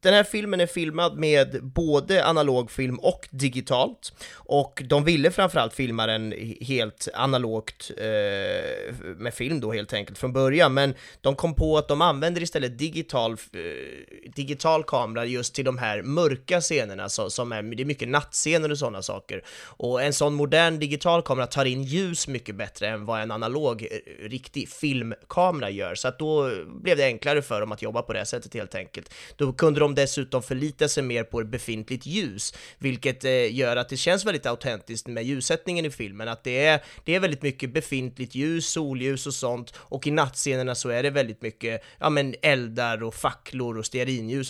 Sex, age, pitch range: male, 30-49, 120-150 Hz